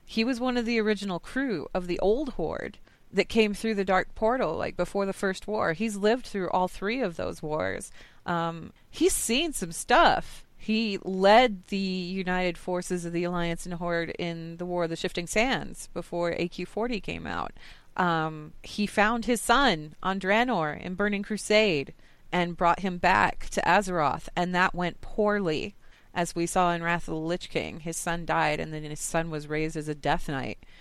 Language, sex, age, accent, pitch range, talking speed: English, female, 30-49, American, 160-205 Hz, 190 wpm